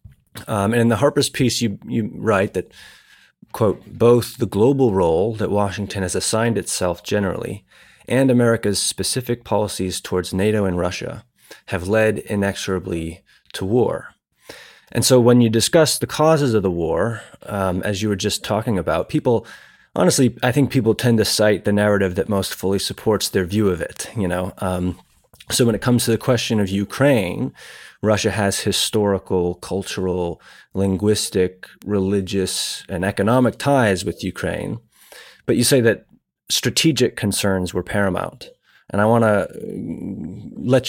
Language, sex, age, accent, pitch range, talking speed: English, male, 30-49, American, 95-115 Hz, 155 wpm